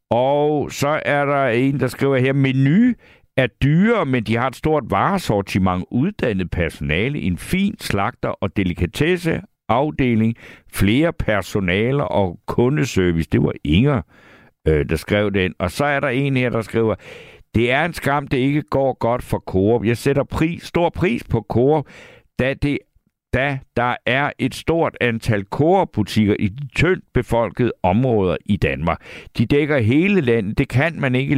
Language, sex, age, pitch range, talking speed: Danish, male, 60-79, 95-135 Hz, 165 wpm